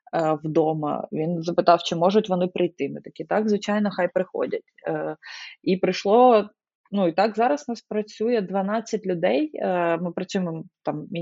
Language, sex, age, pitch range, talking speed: Ukrainian, female, 20-39, 160-195 Hz, 155 wpm